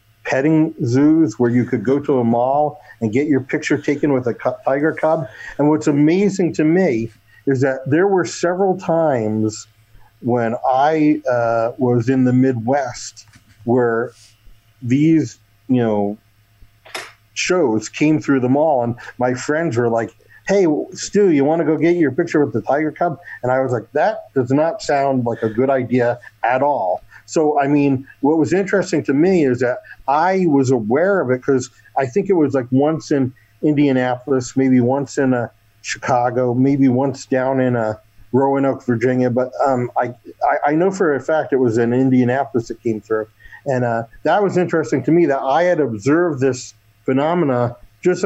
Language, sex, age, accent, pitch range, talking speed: English, male, 50-69, American, 120-150 Hz, 180 wpm